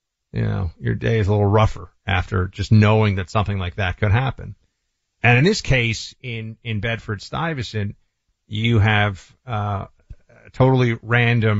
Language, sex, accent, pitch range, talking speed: English, male, American, 105-125 Hz, 150 wpm